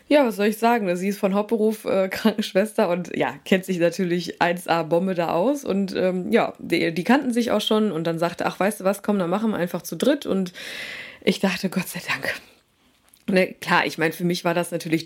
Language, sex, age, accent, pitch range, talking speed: German, female, 20-39, German, 175-225 Hz, 225 wpm